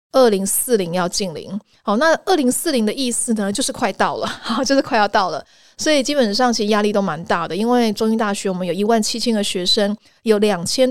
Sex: female